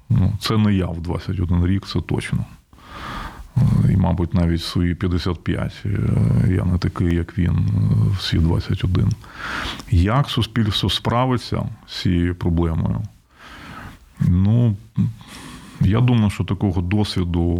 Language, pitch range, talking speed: Ukrainian, 90-110 Hz, 115 wpm